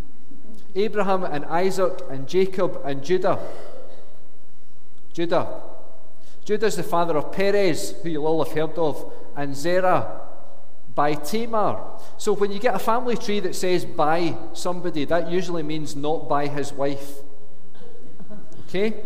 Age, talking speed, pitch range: 40-59, 130 wpm, 155-190 Hz